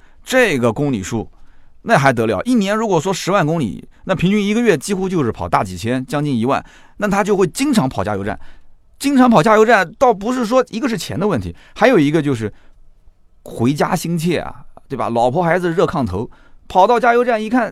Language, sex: Chinese, male